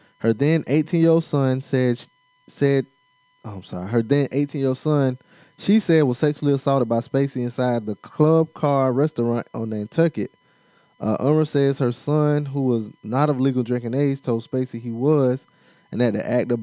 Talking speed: 170 wpm